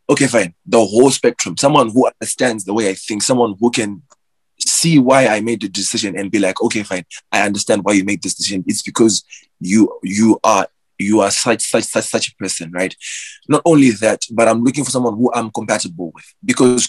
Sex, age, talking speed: male, 20-39, 215 wpm